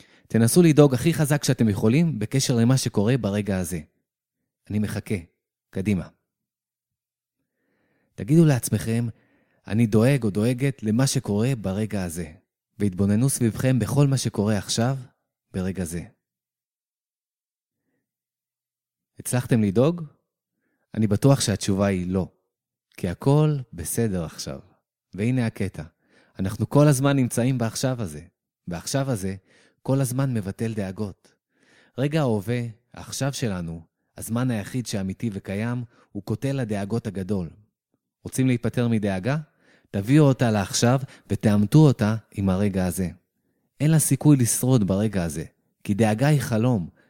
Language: Hebrew